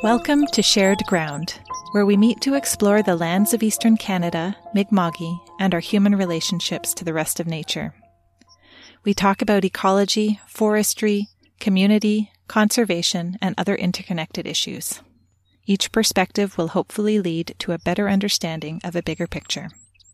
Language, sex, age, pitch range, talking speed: English, female, 30-49, 170-210 Hz, 145 wpm